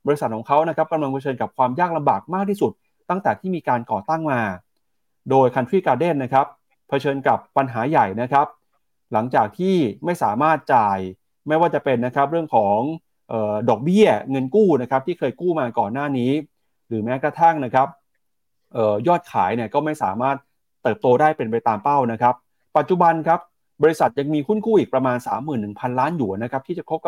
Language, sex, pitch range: Thai, male, 120-160 Hz